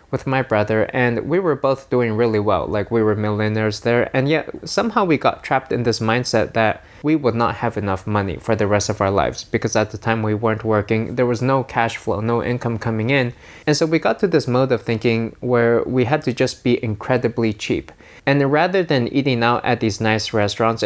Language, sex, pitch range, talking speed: English, male, 110-130 Hz, 230 wpm